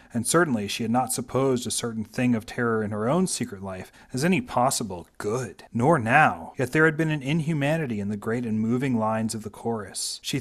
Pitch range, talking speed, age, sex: 100-120 Hz, 220 wpm, 40-59, male